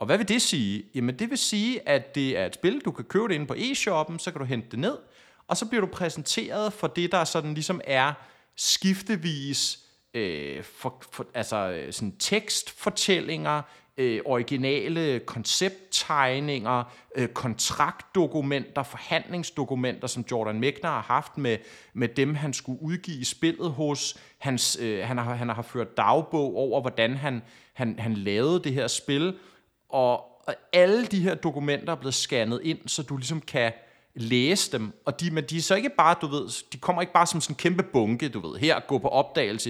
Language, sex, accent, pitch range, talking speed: Danish, male, native, 120-165 Hz, 185 wpm